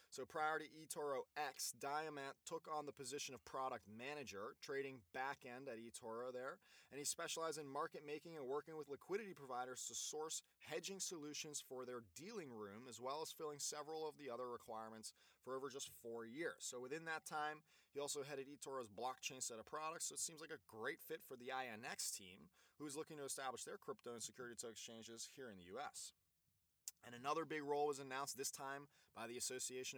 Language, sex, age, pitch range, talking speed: English, male, 20-39, 125-160 Hz, 200 wpm